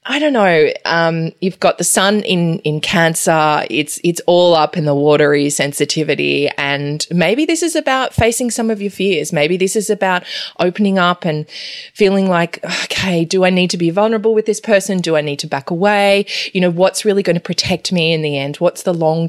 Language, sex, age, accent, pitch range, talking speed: English, female, 20-39, Australian, 150-180 Hz, 210 wpm